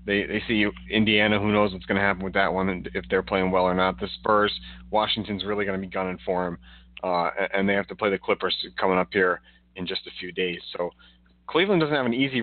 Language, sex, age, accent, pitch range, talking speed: English, male, 30-49, American, 95-115 Hz, 250 wpm